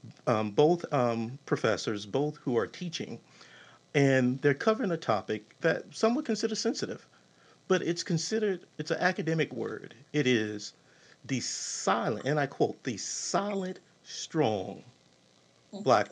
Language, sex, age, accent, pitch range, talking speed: English, male, 50-69, American, 125-190 Hz, 135 wpm